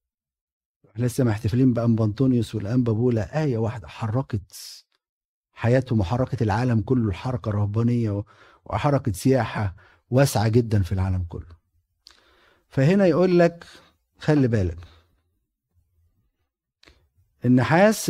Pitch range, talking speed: 90-130 Hz, 90 wpm